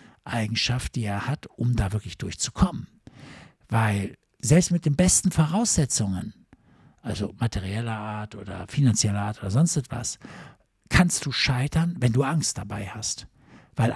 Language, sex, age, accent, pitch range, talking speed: German, male, 60-79, German, 120-180 Hz, 140 wpm